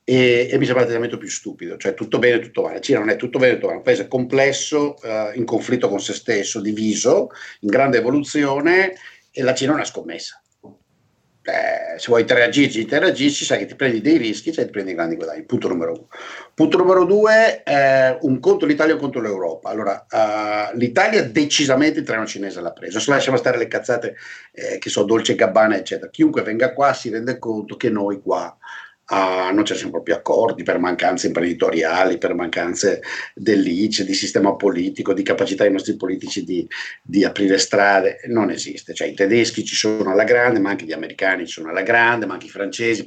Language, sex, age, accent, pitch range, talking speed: Italian, male, 50-69, native, 105-155 Hz, 200 wpm